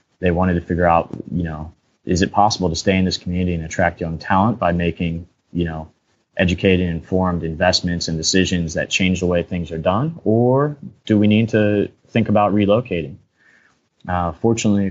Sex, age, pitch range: male, 20-39, 85-100 Hz